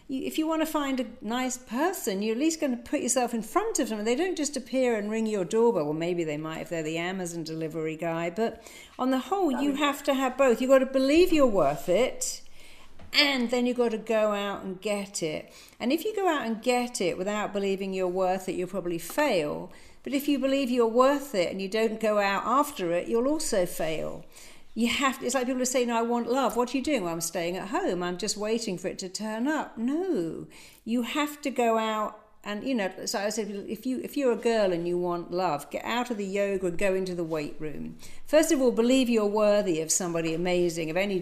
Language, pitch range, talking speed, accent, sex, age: English, 185-265 Hz, 250 wpm, British, female, 50-69